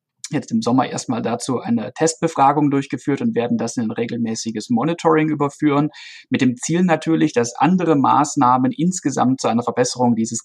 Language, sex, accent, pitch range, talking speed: German, male, German, 120-155 Hz, 160 wpm